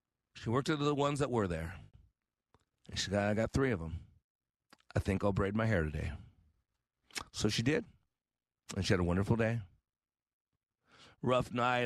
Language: English